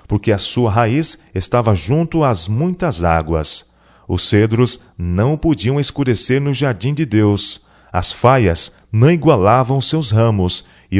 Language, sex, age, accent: Portuguese, male, 40-59, Brazilian